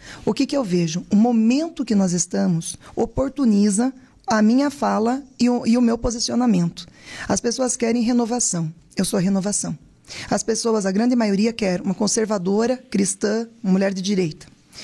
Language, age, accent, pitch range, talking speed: Portuguese, 20-39, Brazilian, 200-250 Hz, 155 wpm